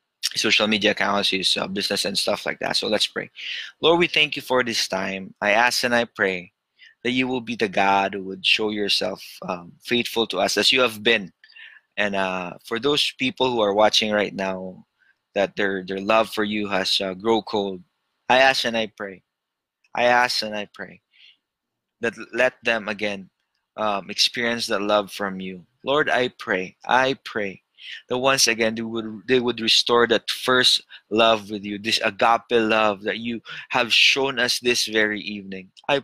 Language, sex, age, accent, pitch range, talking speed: English, male, 20-39, Filipino, 105-125 Hz, 190 wpm